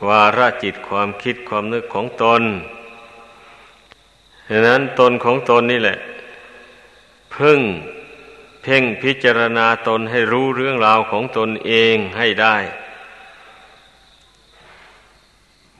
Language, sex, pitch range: Thai, male, 110-130 Hz